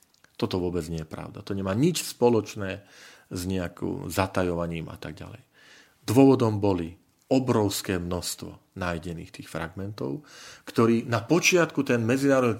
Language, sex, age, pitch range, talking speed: Slovak, male, 40-59, 95-135 Hz, 130 wpm